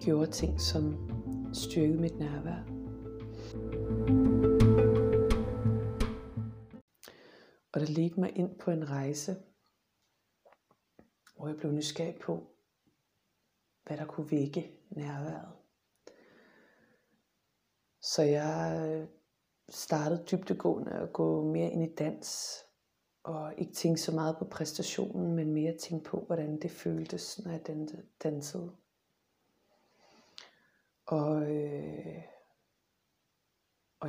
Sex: female